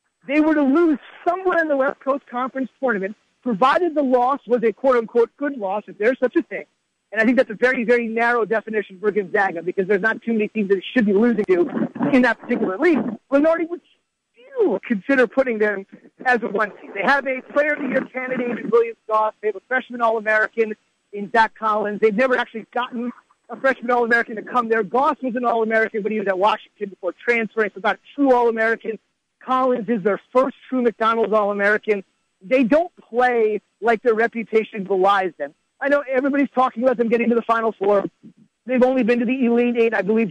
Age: 40-59